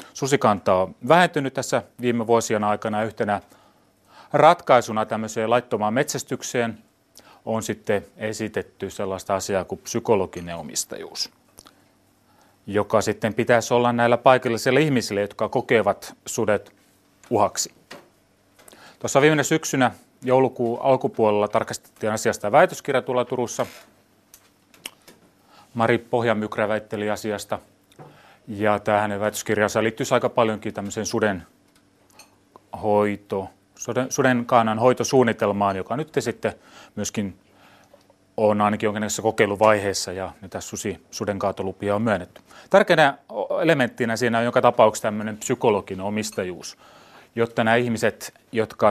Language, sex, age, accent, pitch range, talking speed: Finnish, male, 30-49, native, 105-120 Hz, 95 wpm